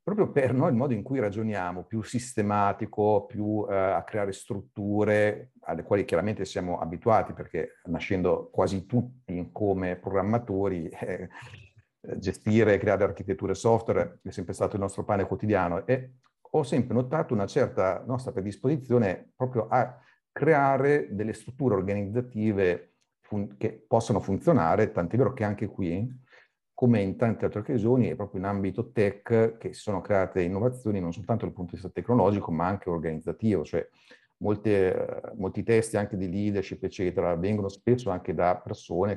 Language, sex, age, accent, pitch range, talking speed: Italian, male, 50-69, native, 95-115 Hz, 155 wpm